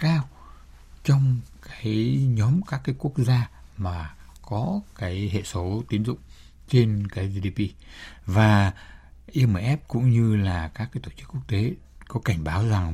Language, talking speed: Vietnamese, 155 wpm